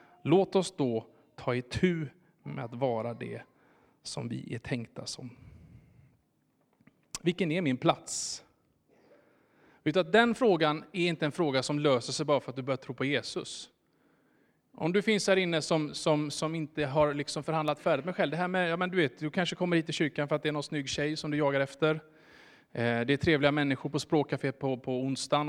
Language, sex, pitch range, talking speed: Swedish, male, 135-180 Hz, 200 wpm